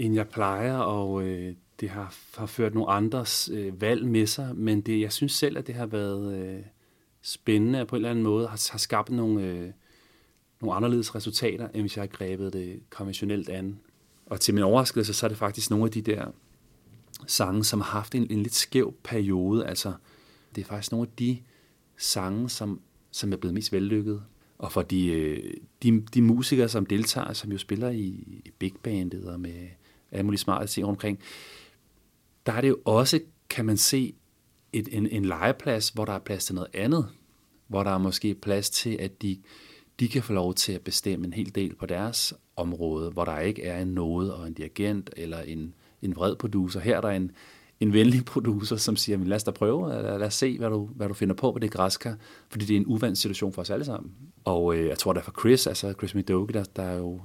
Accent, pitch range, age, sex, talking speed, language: native, 95-115 Hz, 30-49, male, 215 wpm, Danish